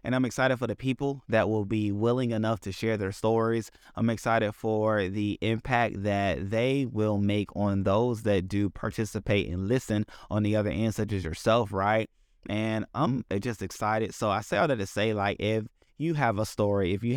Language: English